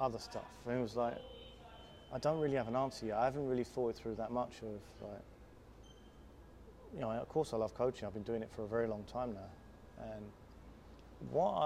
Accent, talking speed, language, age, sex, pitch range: British, 210 wpm, English, 30-49, male, 105-120 Hz